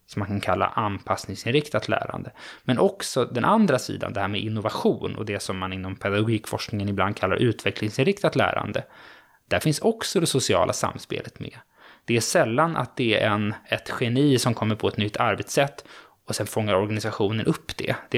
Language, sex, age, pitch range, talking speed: Swedish, male, 20-39, 100-130 Hz, 175 wpm